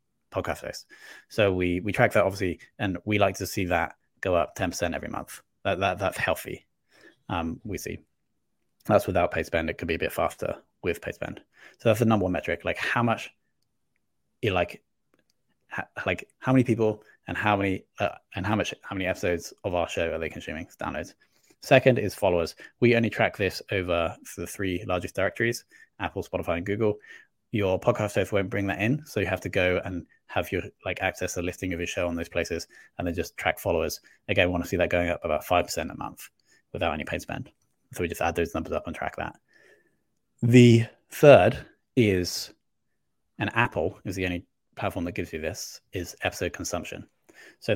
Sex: male